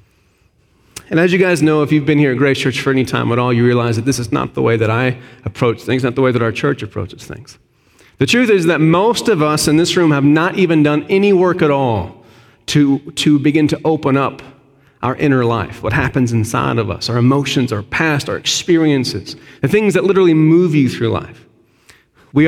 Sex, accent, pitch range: male, American, 125-165 Hz